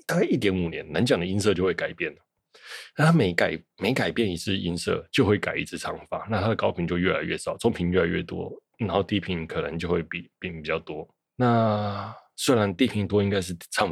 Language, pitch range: Chinese, 85-105 Hz